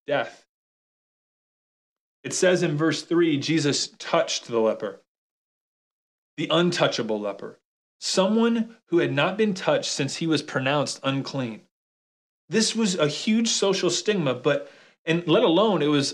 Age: 30-49